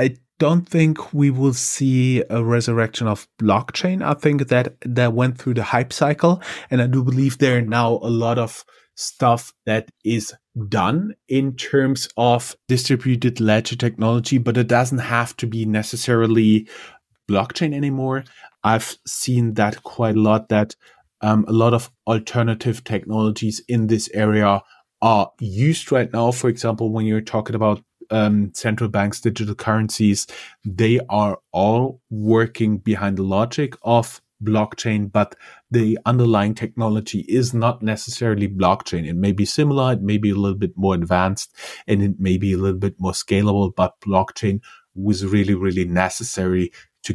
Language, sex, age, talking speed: English, male, 30-49, 160 wpm